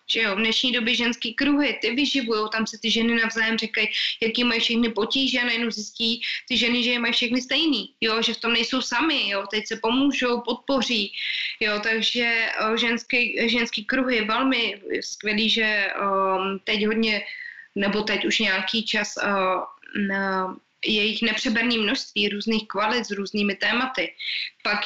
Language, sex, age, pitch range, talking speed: Slovak, female, 20-39, 220-255 Hz, 165 wpm